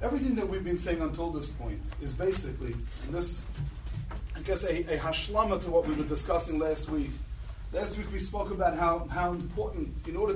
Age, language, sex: 30-49, English, male